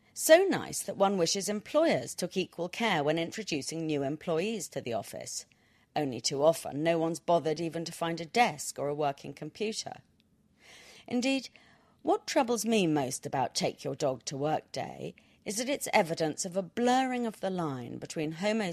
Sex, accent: female, British